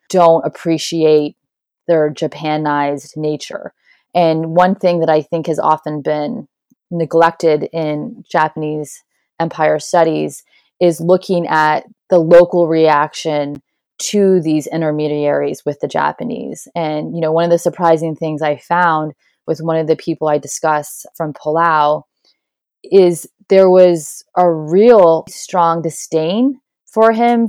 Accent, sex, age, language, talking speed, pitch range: American, female, 20-39, English, 130 wpm, 155-180 Hz